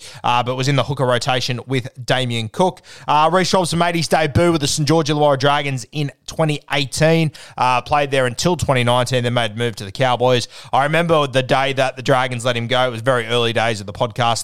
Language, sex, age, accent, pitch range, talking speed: English, male, 20-39, Australian, 115-140 Hz, 225 wpm